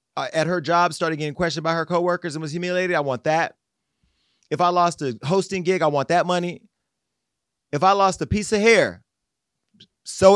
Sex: male